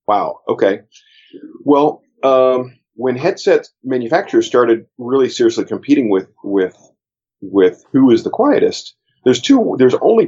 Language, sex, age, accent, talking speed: English, male, 40-59, American, 130 wpm